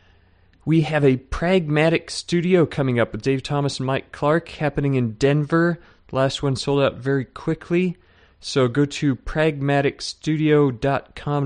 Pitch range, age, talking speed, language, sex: 120-140 Hz, 30-49, 135 wpm, English, male